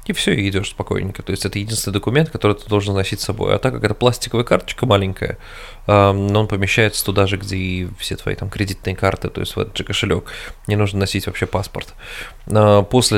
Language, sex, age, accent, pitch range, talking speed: Russian, male, 20-39, native, 95-110 Hz, 215 wpm